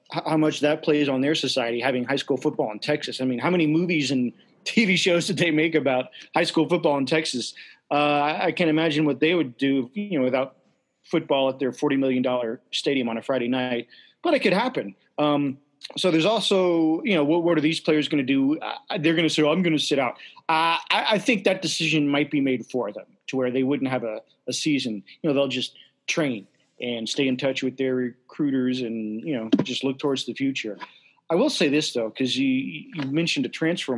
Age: 30-49